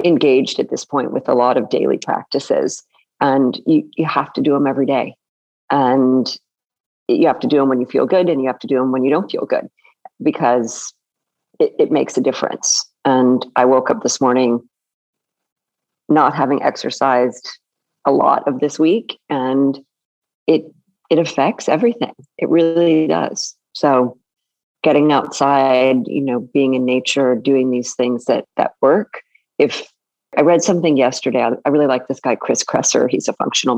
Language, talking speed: English, 175 wpm